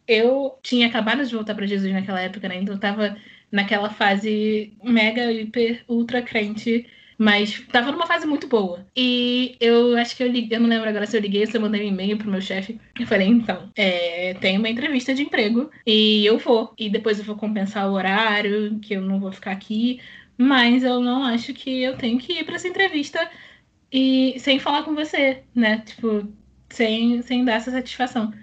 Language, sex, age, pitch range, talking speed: Portuguese, female, 20-39, 210-245 Hz, 205 wpm